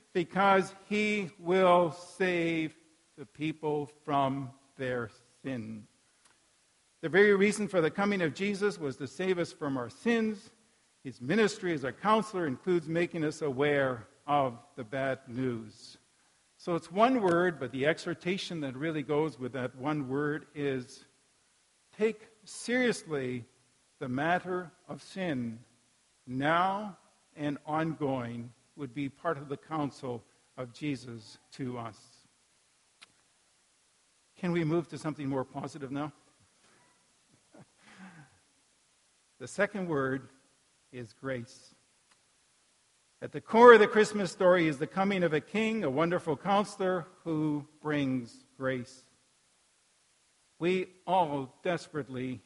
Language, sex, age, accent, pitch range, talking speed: English, male, 50-69, American, 135-180 Hz, 120 wpm